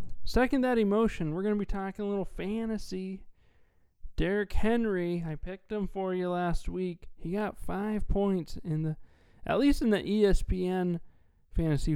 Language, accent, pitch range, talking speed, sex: English, American, 140-195 Hz, 160 wpm, male